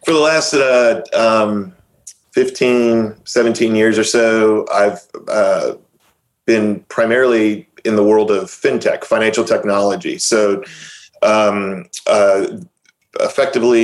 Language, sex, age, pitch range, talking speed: English, male, 30-49, 100-115 Hz, 110 wpm